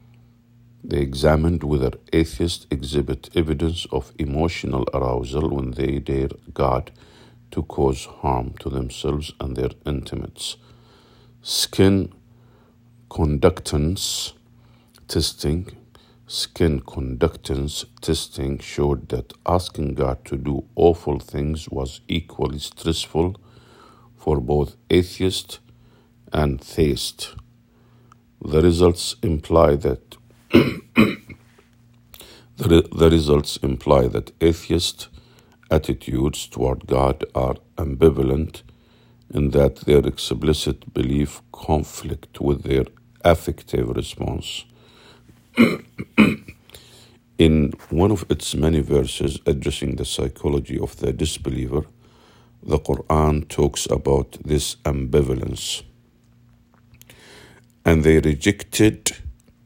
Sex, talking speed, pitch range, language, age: male, 90 wpm, 70-115 Hz, English, 50-69